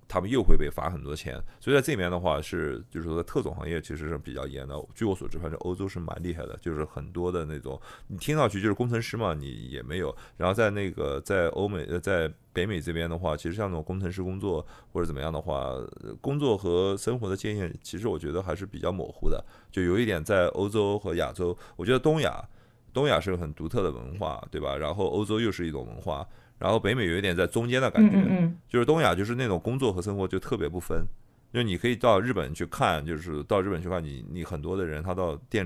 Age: 30-49